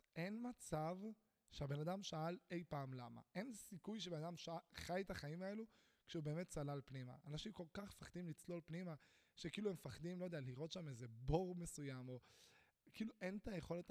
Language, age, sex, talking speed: Hebrew, 20-39, male, 175 wpm